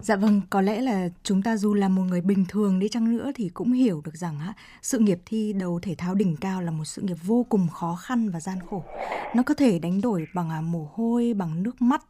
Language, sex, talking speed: Vietnamese, female, 255 wpm